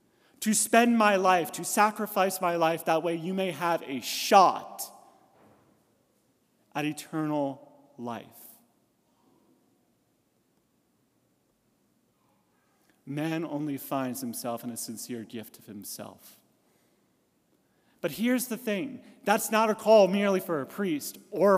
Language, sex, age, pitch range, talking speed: English, male, 30-49, 145-200 Hz, 115 wpm